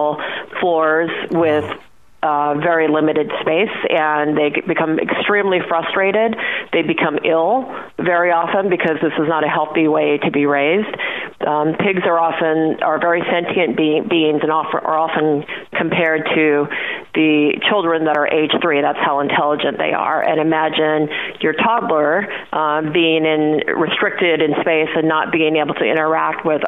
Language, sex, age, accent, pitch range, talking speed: English, female, 40-59, American, 150-170 Hz, 155 wpm